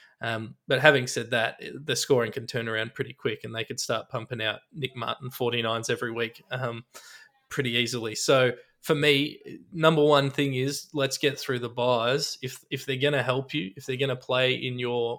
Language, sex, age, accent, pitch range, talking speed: English, male, 20-39, Australian, 120-140 Hz, 205 wpm